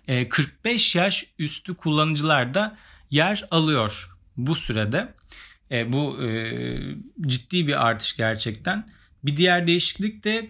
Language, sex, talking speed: Turkish, male, 105 wpm